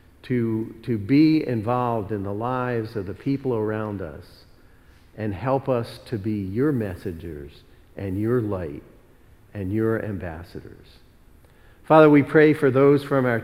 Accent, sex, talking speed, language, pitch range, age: American, male, 145 wpm, English, 100-125 Hz, 50-69